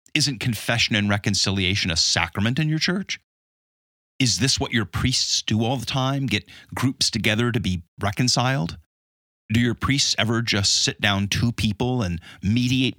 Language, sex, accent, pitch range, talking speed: English, male, American, 95-125 Hz, 160 wpm